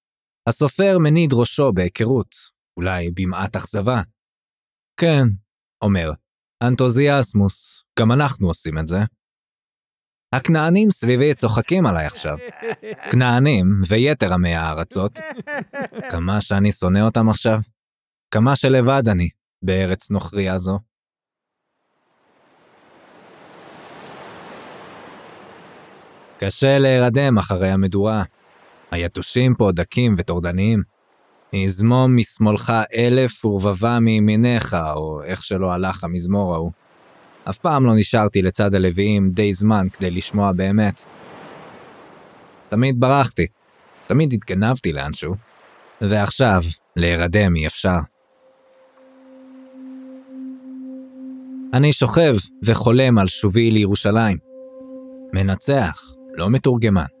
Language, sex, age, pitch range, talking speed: English, male, 20-39, 95-135 Hz, 75 wpm